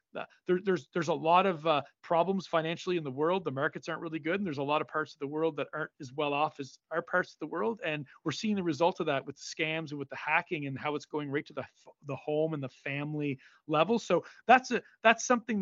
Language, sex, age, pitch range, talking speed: English, male, 40-59, 140-175 Hz, 265 wpm